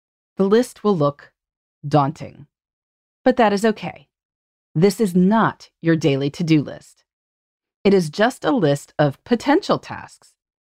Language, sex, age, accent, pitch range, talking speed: English, female, 30-49, American, 150-245 Hz, 135 wpm